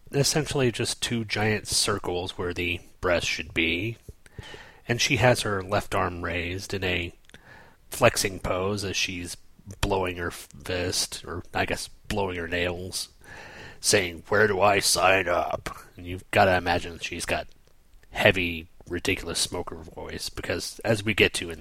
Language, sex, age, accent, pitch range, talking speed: English, male, 30-49, American, 90-110 Hz, 155 wpm